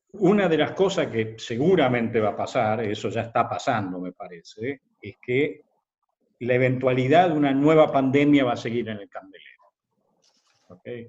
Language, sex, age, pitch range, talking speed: Spanish, male, 50-69, 110-130 Hz, 160 wpm